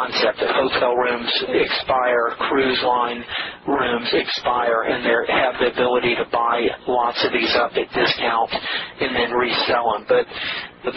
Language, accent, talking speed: English, American, 150 wpm